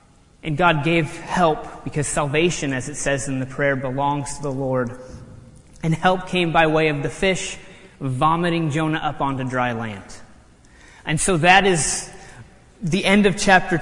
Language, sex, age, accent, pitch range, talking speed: English, male, 30-49, American, 155-220 Hz, 165 wpm